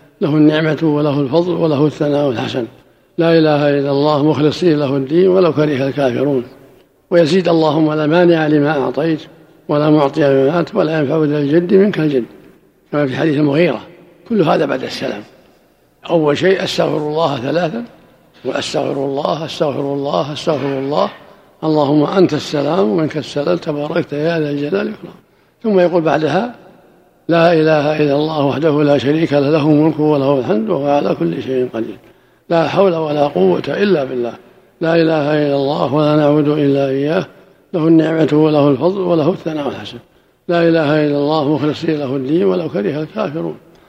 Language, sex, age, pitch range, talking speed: Arabic, male, 60-79, 145-175 Hz, 150 wpm